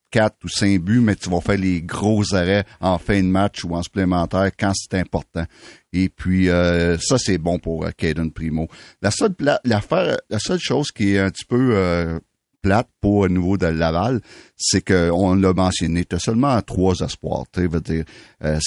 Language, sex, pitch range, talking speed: French, male, 85-100 Hz, 205 wpm